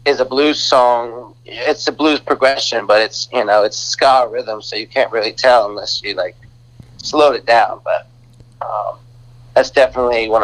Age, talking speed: 30-49, 180 wpm